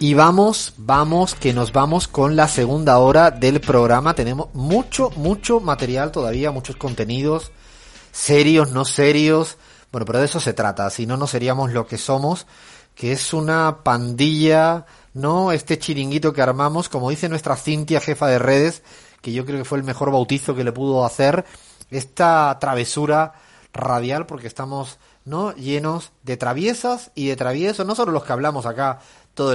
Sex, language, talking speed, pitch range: male, Spanish, 165 wpm, 130-180 Hz